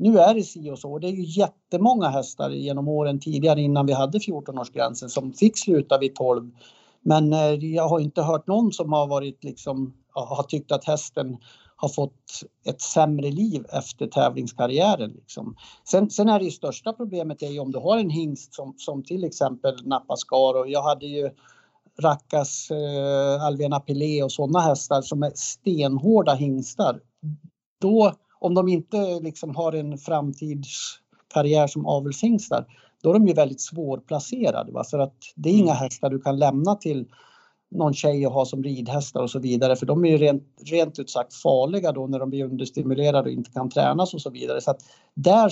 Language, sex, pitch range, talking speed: Swedish, male, 135-165 Hz, 180 wpm